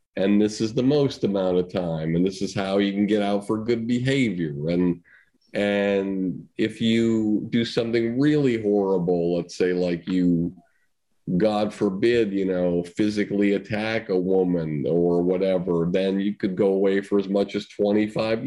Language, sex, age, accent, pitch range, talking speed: English, male, 40-59, American, 95-110 Hz, 165 wpm